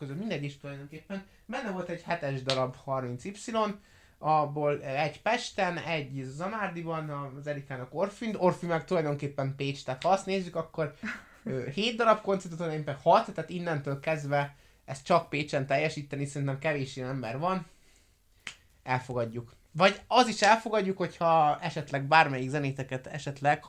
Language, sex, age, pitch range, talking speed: Hungarian, male, 20-39, 120-155 Hz, 135 wpm